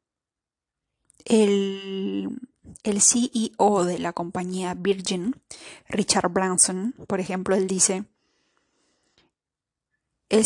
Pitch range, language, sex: 190-225 Hz, Spanish, female